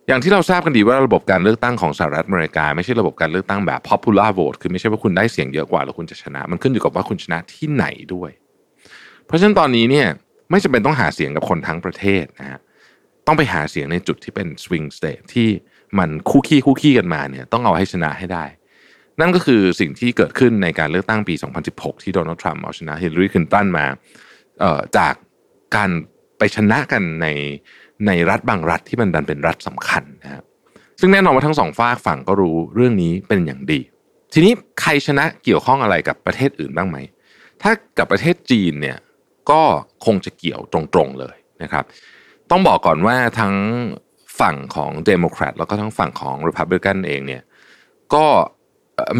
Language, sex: Thai, male